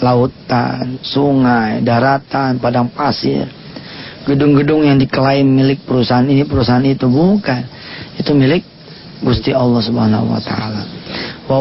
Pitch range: 130-165 Hz